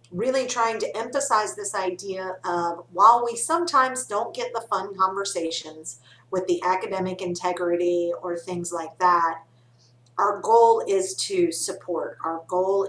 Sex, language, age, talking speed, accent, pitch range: female, English, 40-59, 140 wpm, American, 170-210 Hz